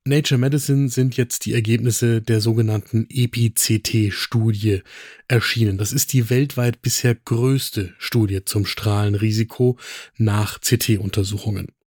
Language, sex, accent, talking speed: German, male, German, 105 wpm